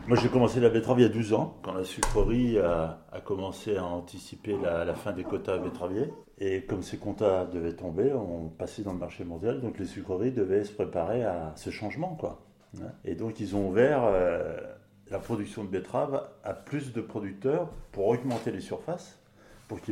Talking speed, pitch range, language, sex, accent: 200 wpm, 90-120 Hz, French, male, French